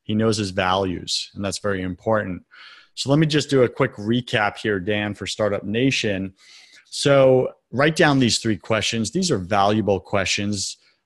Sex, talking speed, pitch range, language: male, 170 wpm, 105-135 Hz, English